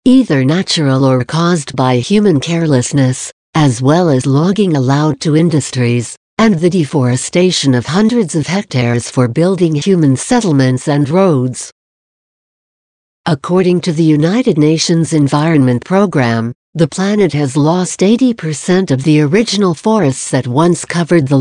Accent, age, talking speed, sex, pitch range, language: American, 60-79, 130 wpm, female, 135-180 Hz, English